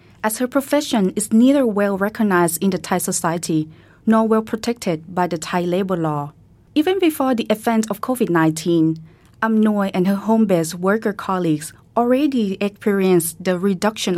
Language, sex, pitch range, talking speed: English, female, 170-215 Hz, 140 wpm